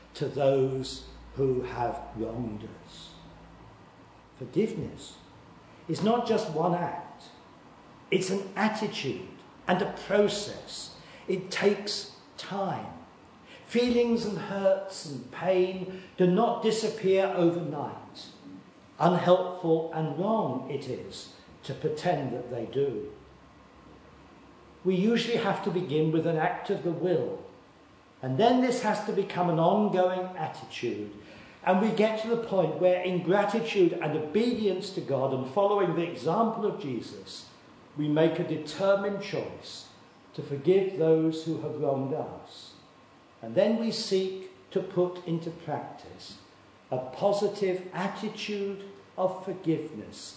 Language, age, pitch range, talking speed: English, 50-69, 150-200 Hz, 125 wpm